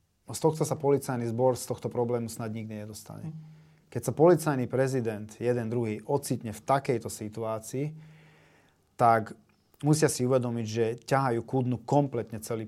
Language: Slovak